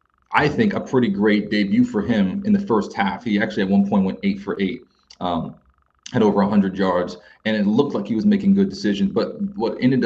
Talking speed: 225 wpm